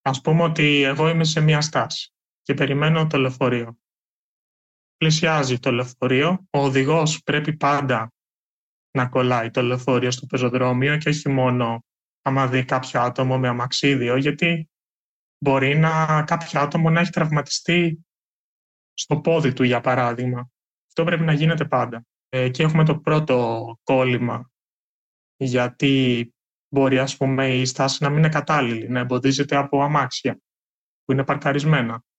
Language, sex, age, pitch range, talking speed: Greek, male, 20-39, 125-145 Hz, 140 wpm